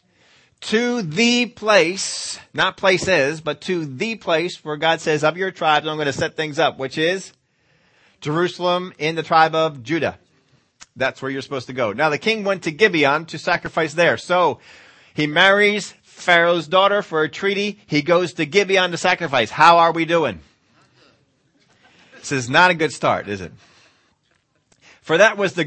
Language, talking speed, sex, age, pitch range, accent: English, 175 wpm, male, 30-49, 150-195 Hz, American